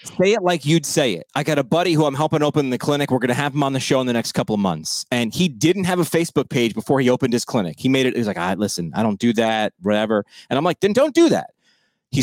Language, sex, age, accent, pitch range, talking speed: English, male, 30-49, American, 125-160 Hz, 305 wpm